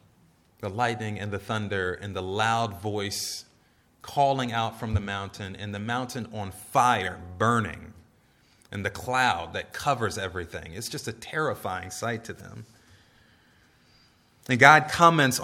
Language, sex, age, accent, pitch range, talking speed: English, male, 30-49, American, 105-135 Hz, 140 wpm